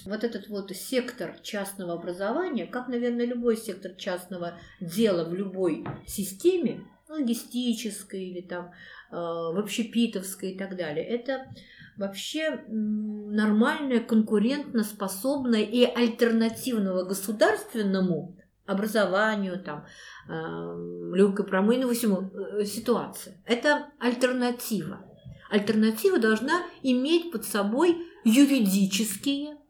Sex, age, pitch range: female, 50-69, 195-245 Hz